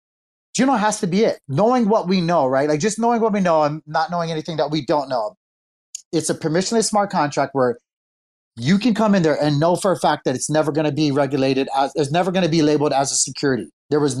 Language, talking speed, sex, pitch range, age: English, 260 wpm, male, 150-185 Hz, 30-49